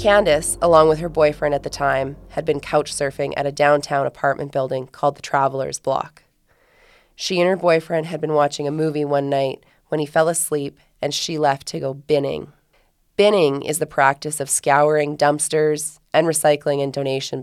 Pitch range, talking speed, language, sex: 140-165 Hz, 185 wpm, English, female